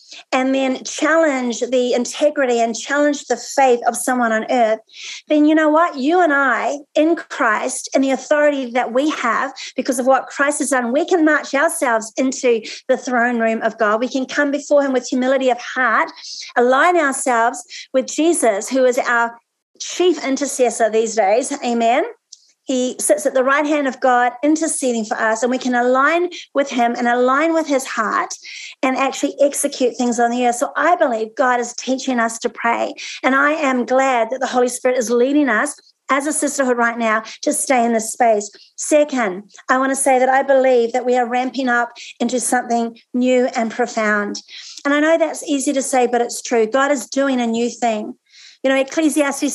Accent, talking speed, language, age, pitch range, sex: Australian, 195 wpm, English, 40-59, 240-290 Hz, female